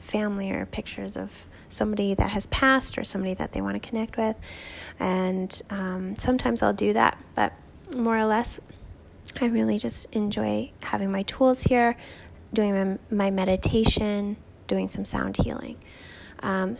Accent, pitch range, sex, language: American, 170-220 Hz, female, English